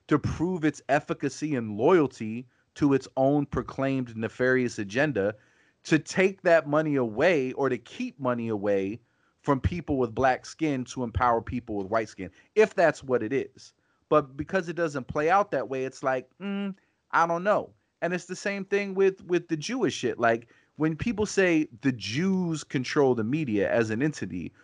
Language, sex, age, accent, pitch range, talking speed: English, male, 30-49, American, 115-155 Hz, 180 wpm